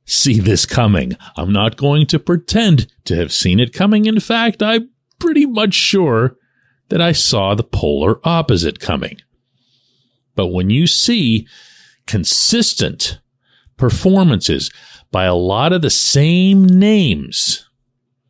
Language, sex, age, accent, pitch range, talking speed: English, male, 40-59, American, 105-145 Hz, 130 wpm